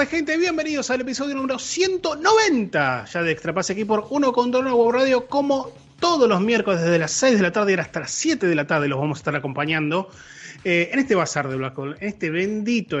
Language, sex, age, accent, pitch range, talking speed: Spanish, male, 30-49, Argentinian, 130-205 Hz, 205 wpm